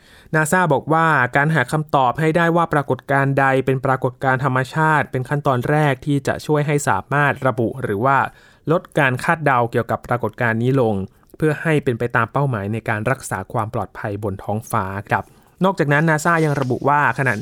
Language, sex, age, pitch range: Thai, male, 20-39, 115-145 Hz